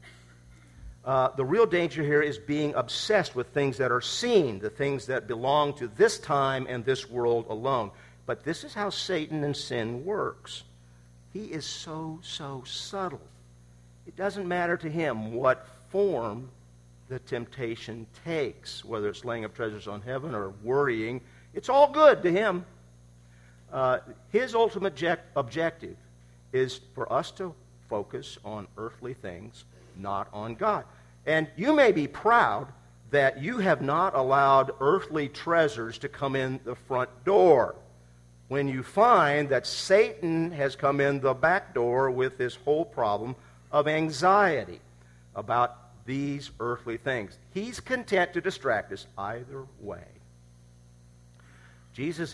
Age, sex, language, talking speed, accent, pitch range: 50-69, male, English, 140 wpm, American, 90-150 Hz